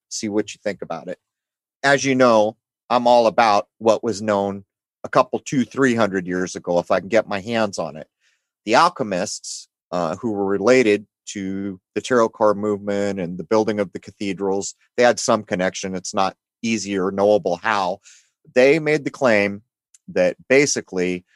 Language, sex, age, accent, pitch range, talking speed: English, male, 30-49, American, 100-120 Hz, 175 wpm